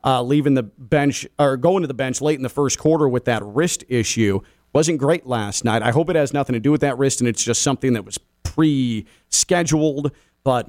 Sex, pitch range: male, 140-200 Hz